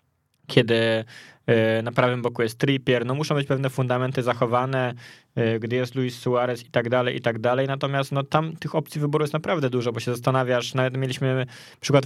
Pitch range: 120-130 Hz